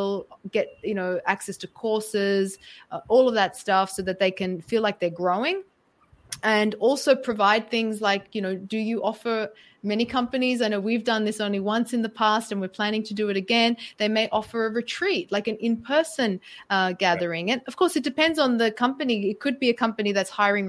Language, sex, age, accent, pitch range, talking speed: English, female, 20-39, Australian, 190-240 Hz, 210 wpm